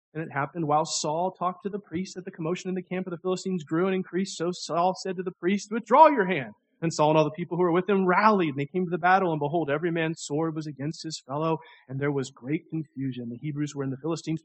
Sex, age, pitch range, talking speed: male, 40-59, 140-175 Hz, 280 wpm